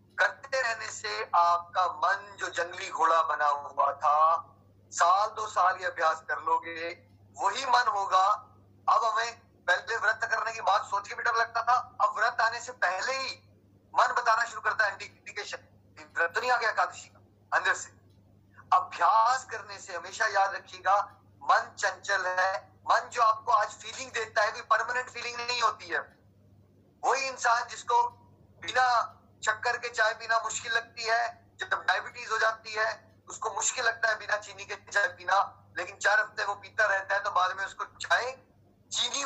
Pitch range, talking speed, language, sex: 195-235 Hz, 135 wpm, Hindi, male